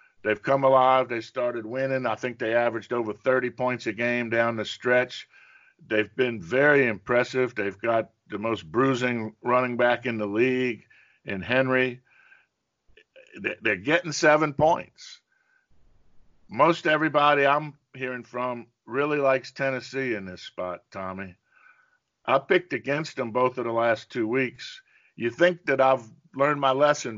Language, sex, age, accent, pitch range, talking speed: English, male, 50-69, American, 115-145 Hz, 150 wpm